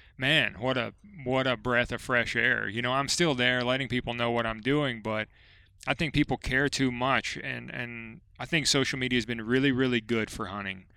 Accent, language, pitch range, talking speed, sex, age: American, English, 110-130 Hz, 220 wpm, male, 30-49